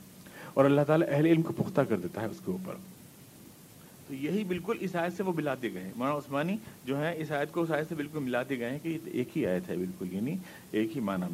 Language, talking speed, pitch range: Urdu, 130 wpm, 130-185 Hz